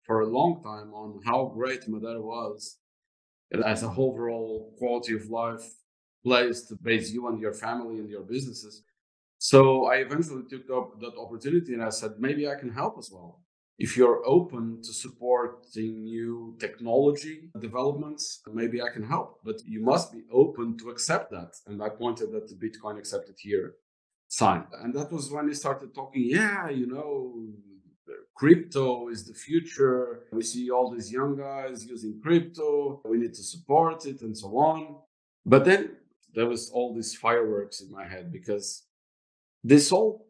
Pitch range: 110-135 Hz